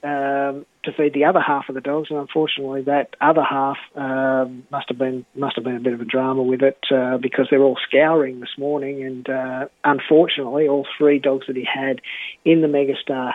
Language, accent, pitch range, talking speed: English, Australian, 130-145 Hz, 215 wpm